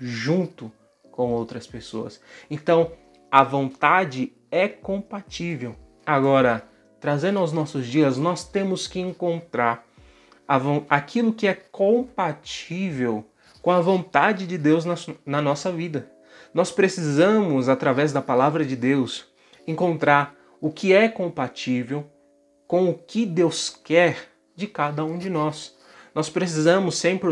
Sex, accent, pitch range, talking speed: male, Brazilian, 135-185 Hz, 120 wpm